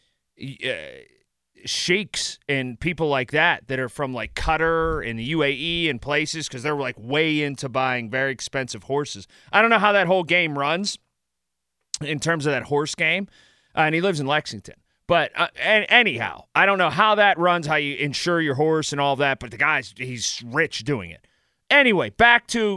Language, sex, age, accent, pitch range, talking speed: English, male, 30-49, American, 135-210 Hz, 190 wpm